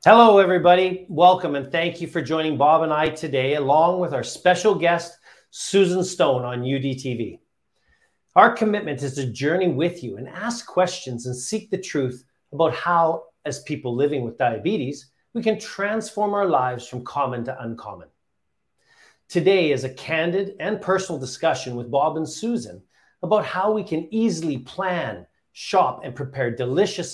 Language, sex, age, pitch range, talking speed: English, male, 40-59, 130-185 Hz, 160 wpm